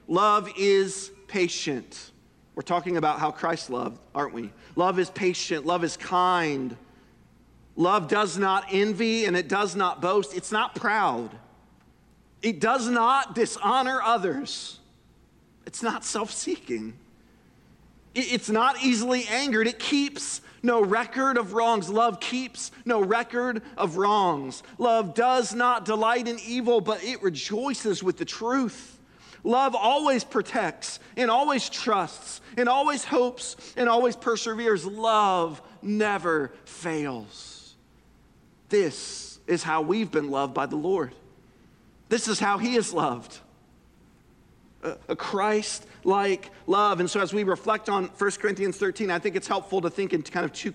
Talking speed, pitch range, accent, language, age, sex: 140 wpm, 180-235 Hz, American, English, 40-59, male